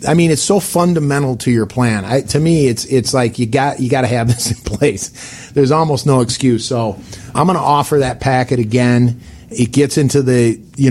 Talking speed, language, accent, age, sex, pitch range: 215 wpm, English, American, 40-59, male, 120-140 Hz